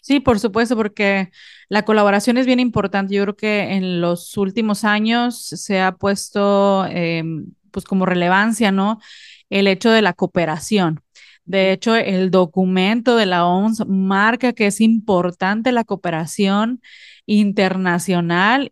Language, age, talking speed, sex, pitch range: Spanish, 30-49, 130 wpm, female, 185-215 Hz